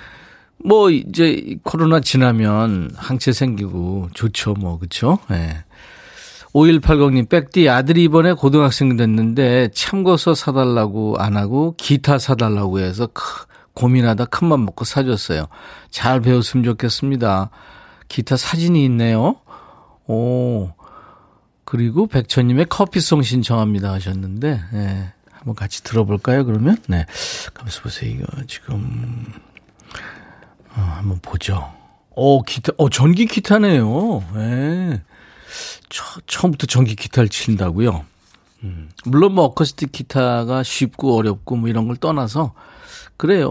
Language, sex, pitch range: Korean, male, 110-150 Hz